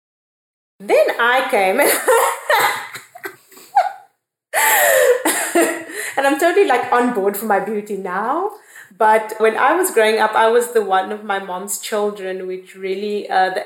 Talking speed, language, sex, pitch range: 135 wpm, English, female, 185-220 Hz